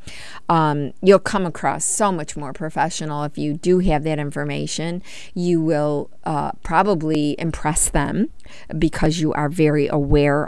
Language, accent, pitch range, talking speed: English, American, 155-210 Hz, 145 wpm